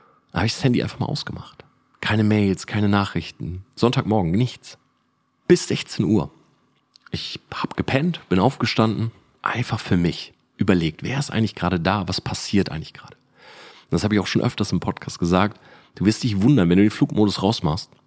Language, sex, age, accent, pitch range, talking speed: German, male, 40-59, German, 90-120 Hz, 175 wpm